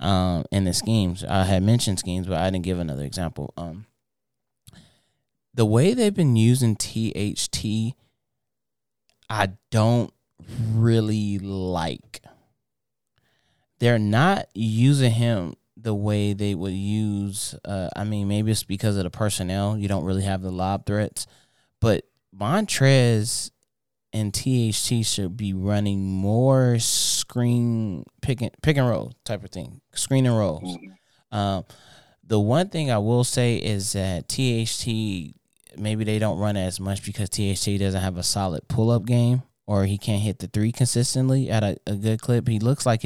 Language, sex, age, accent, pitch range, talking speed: English, male, 20-39, American, 95-120 Hz, 150 wpm